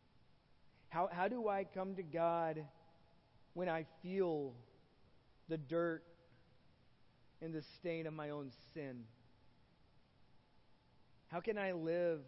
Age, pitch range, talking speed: 40-59, 150-195 Hz, 110 wpm